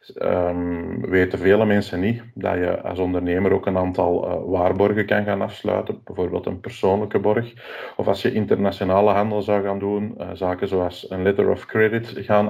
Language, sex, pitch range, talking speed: Dutch, male, 95-115 Hz, 175 wpm